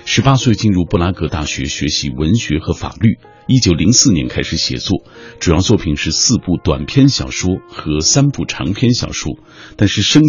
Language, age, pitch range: Chinese, 50-69, 80-120 Hz